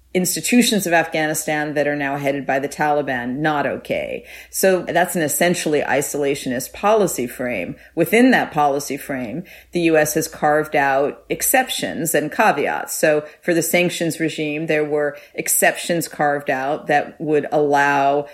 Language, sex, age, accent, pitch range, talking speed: English, female, 40-59, American, 140-160 Hz, 145 wpm